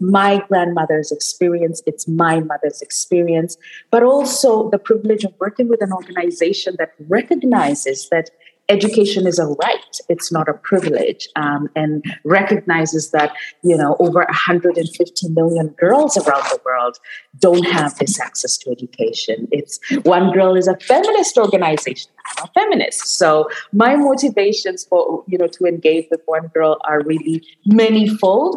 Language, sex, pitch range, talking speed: English, female, 155-220 Hz, 145 wpm